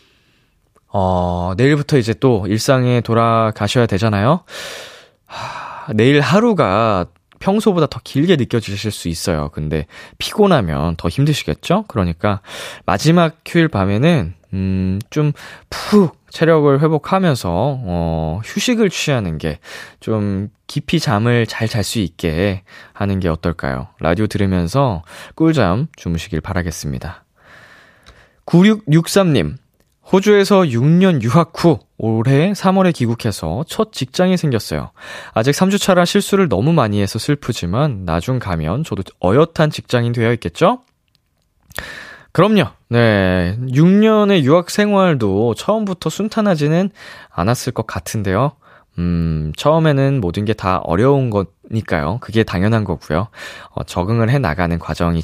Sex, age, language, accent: male, 20-39, Korean, native